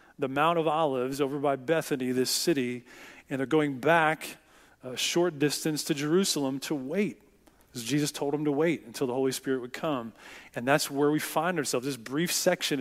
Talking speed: 190 wpm